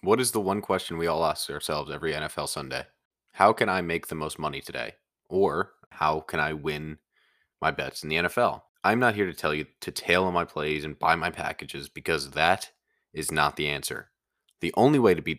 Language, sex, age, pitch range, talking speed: English, male, 20-39, 80-100 Hz, 220 wpm